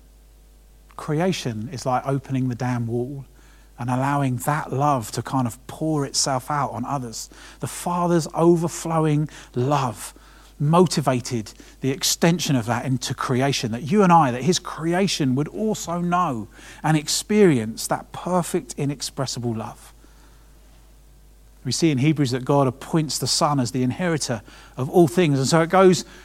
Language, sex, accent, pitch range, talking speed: English, male, British, 125-155 Hz, 150 wpm